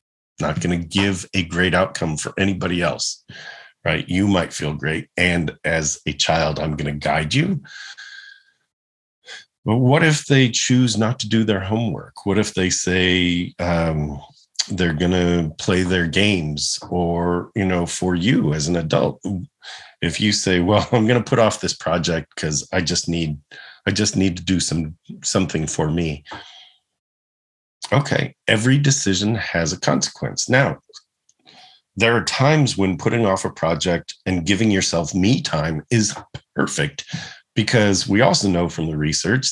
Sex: male